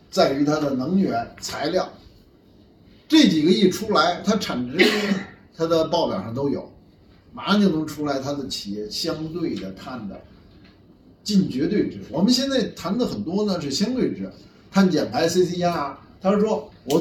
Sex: male